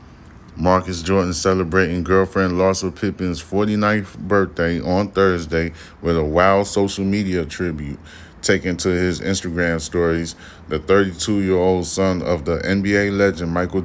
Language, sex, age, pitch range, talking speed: English, male, 10-29, 80-95 Hz, 135 wpm